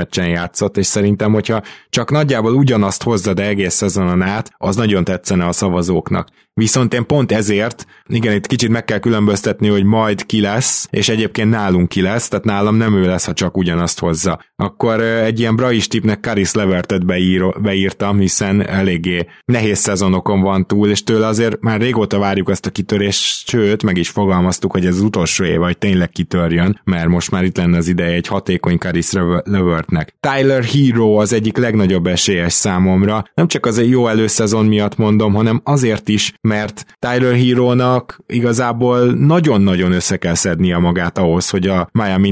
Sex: male